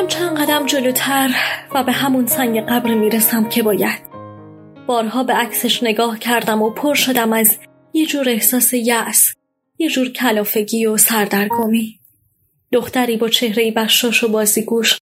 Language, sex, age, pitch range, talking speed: Persian, female, 20-39, 210-245 Hz, 145 wpm